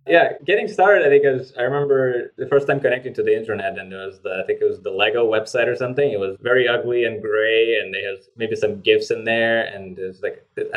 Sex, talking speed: male, 255 wpm